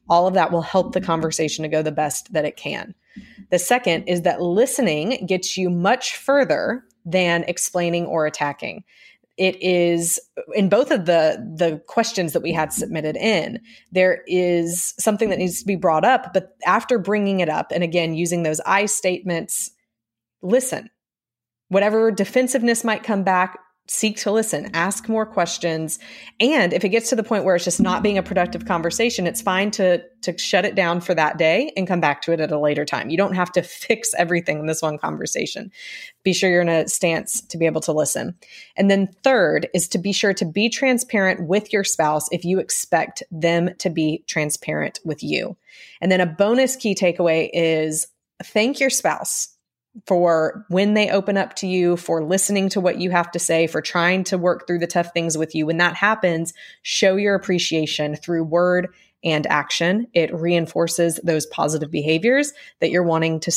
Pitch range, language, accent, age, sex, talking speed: 165-210 Hz, English, American, 20-39, female, 190 wpm